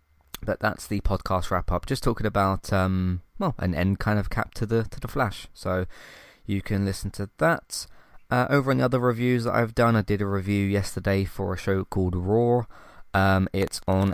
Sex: male